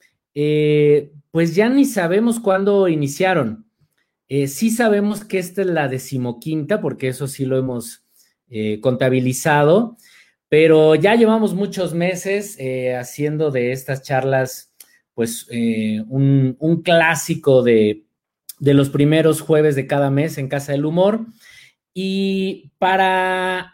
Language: Spanish